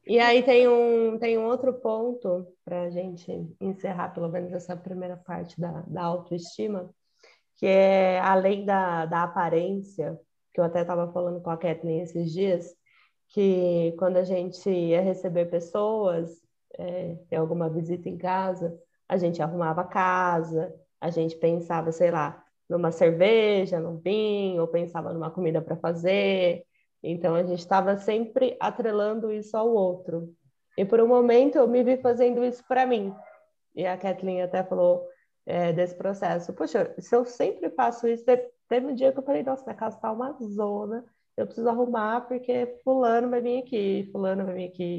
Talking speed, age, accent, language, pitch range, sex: 170 wpm, 20-39, Brazilian, Portuguese, 175-235 Hz, female